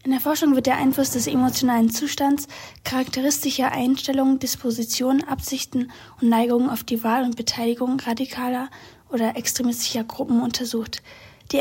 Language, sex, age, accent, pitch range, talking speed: German, female, 20-39, German, 235-275 Hz, 135 wpm